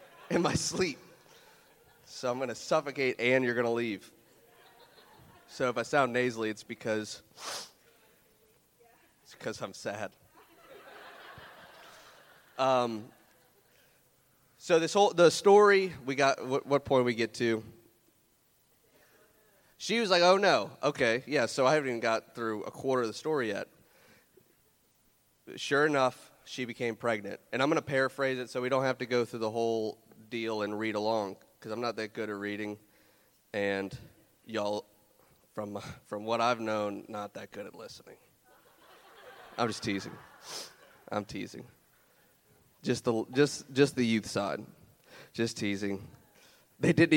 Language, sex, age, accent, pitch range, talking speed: English, male, 30-49, American, 115-150 Hz, 140 wpm